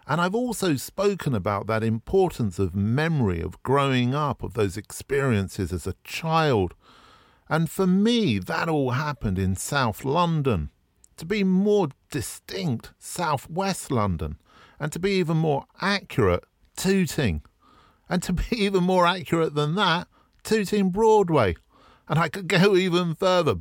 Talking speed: 145 wpm